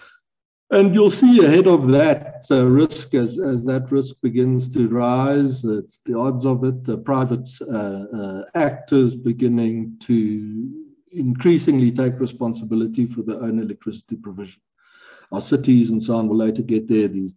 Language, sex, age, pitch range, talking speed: English, male, 60-79, 115-140 Hz, 150 wpm